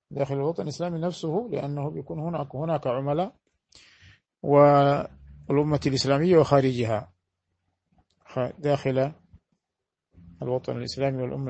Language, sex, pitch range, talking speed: Arabic, male, 130-160 Hz, 85 wpm